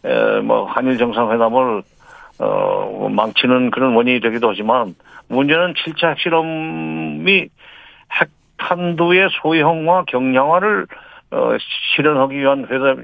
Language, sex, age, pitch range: Korean, male, 50-69, 125-175 Hz